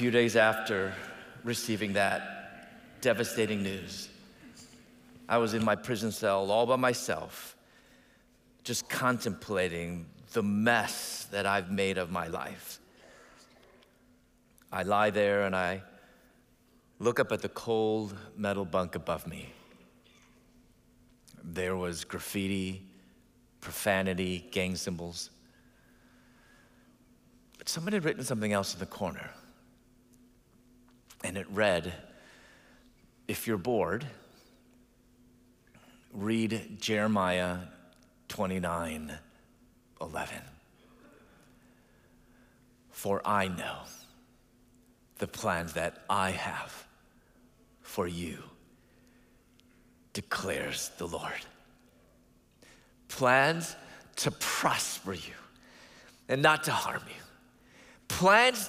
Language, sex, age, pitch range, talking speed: English, male, 40-59, 95-125 Hz, 90 wpm